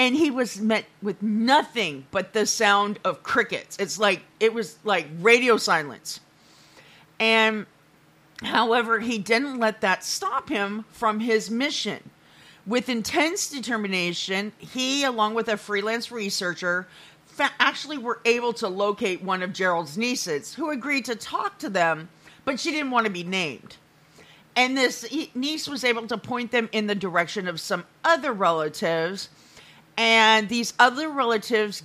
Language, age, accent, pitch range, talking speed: English, 40-59, American, 195-250 Hz, 150 wpm